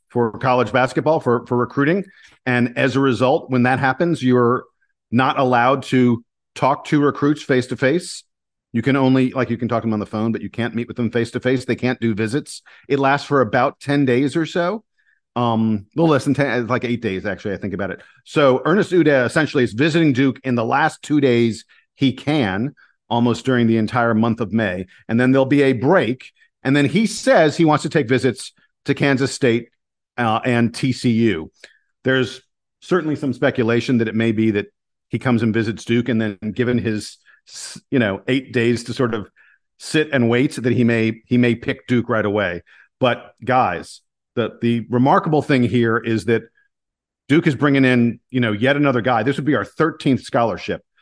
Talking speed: 200 wpm